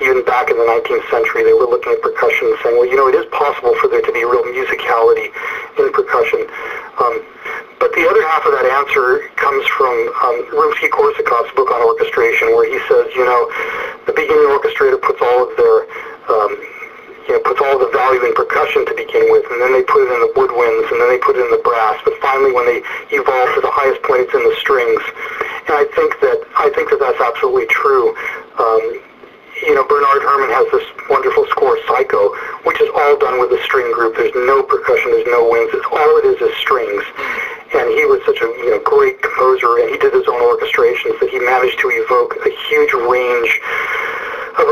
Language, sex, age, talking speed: English, male, 40-59, 215 wpm